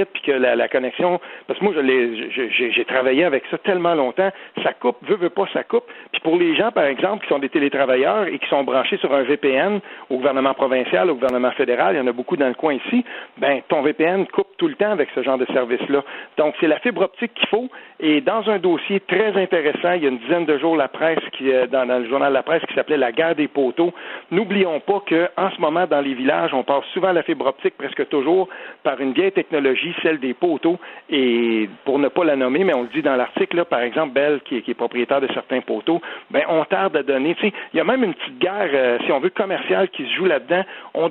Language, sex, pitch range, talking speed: French, male, 135-195 Hz, 260 wpm